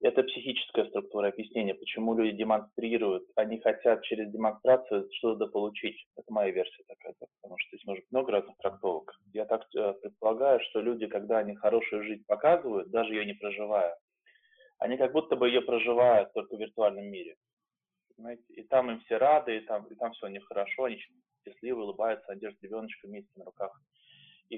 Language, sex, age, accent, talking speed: Russian, male, 20-39, native, 170 wpm